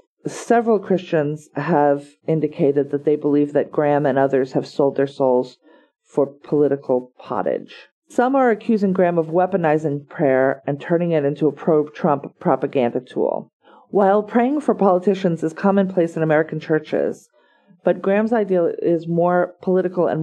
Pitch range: 150-195 Hz